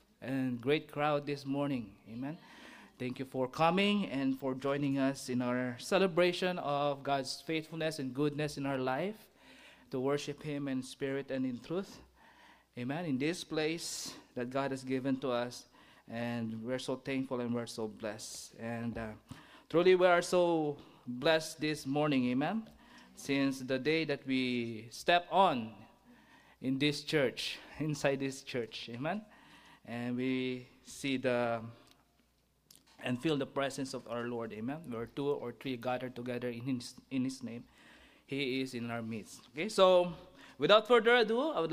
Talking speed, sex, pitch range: 160 wpm, male, 125-155 Hz